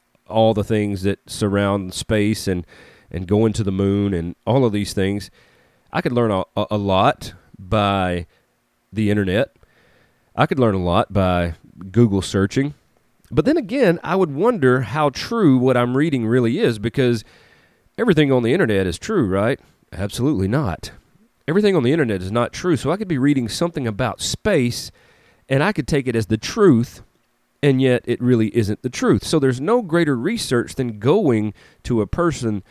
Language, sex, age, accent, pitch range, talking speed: English, male, 30-49, American, 100-130 Hz, 180 wpm